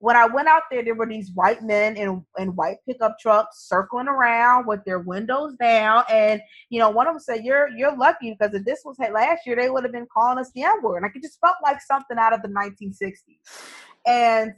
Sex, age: female, 20-39